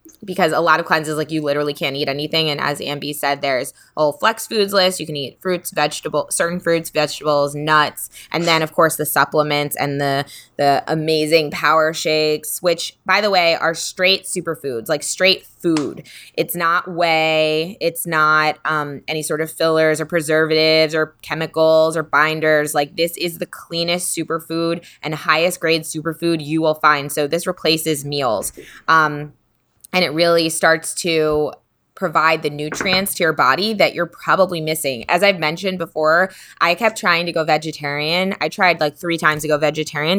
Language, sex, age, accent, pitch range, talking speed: English, female, 20-39, American, 150-170 Hz, 175 wpm